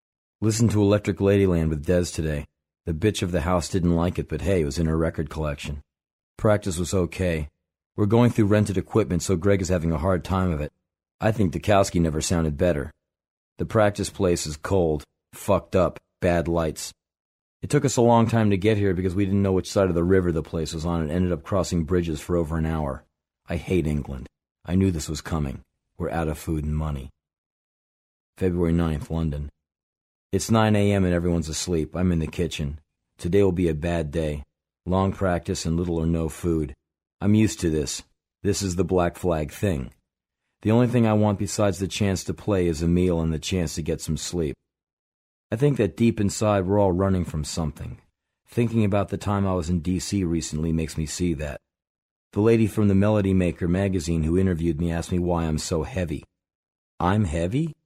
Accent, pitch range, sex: American, 80-100 Hz, male